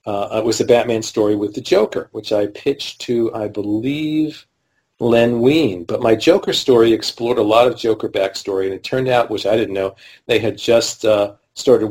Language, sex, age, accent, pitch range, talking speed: English, male, 40-59, American, 105-130 Hz, 200 wpm